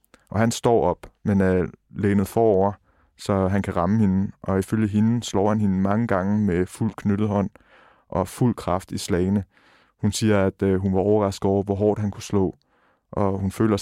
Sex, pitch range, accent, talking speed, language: male, 95-105 Hz, native, 195 wpm, Danish